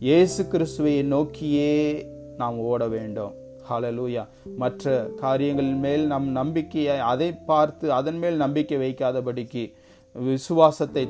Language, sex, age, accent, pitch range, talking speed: Tamil, male, 30-49, native, 130-170 Hz, 95 wpm